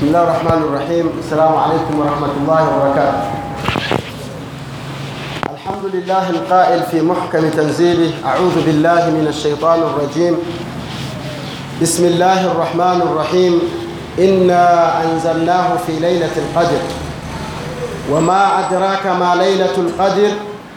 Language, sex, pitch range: Swahili, male, 170-205 Hz